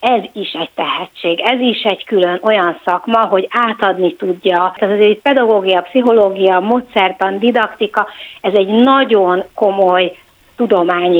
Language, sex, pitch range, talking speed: Hungarian, female, 180-225 Hz, 135 wpm